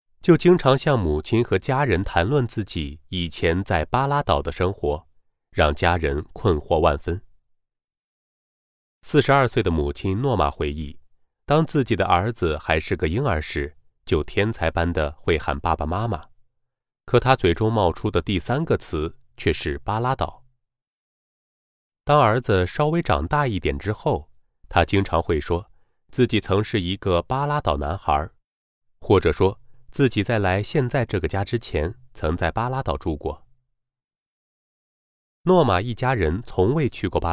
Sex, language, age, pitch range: male, Chinese, 30-49, 85-125 Hz